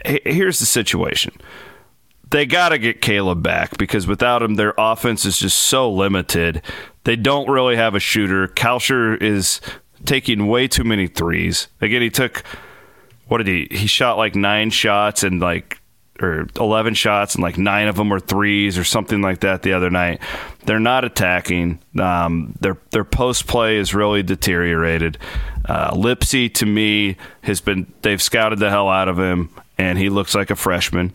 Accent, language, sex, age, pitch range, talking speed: American, English, male, 30-49, 95-115 Hz, 175 wpm